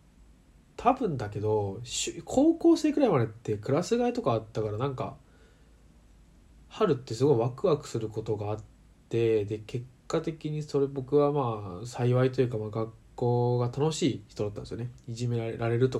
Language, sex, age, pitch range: Japanese, male, 20-39, 110-145 Hz